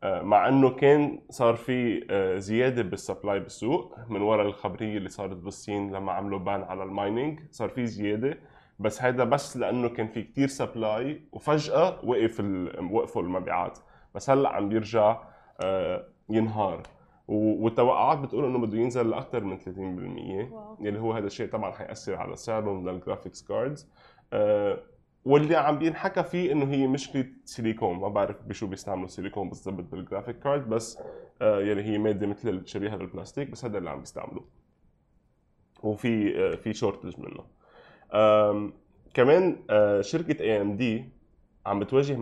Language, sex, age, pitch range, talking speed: Arabic, male, 20-39, 100-135 Hz, 140 wpm